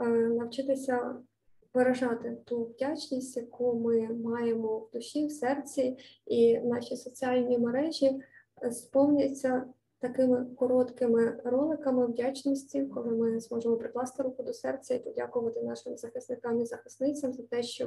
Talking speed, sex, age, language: 120 wpm, female, 20-39, Ukrainian